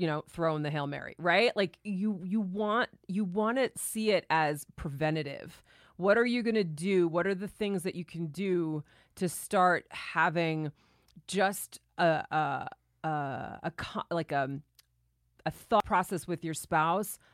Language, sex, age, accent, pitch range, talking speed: English, female, 30-49, American, 155-185 Hz, 165 wpm